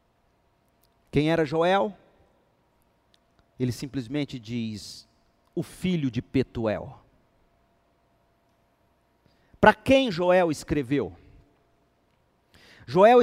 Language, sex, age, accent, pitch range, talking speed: Portuguese, male, 40-59, Brazilian, 140-210 Hz, 70 wpm